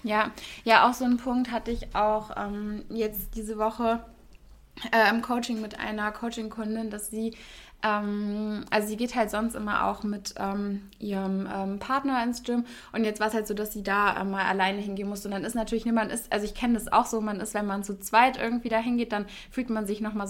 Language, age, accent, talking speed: German, 20-39, German, 225 wpm